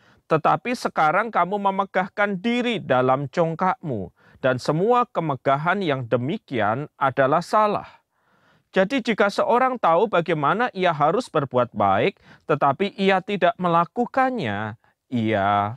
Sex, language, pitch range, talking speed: male, Malay, 140-200 Hz, 105 wpm